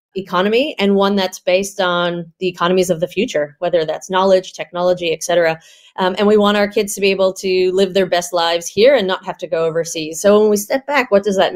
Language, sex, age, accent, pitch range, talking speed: English, female, 30-49, American, 170-200 Hz, 235 wpm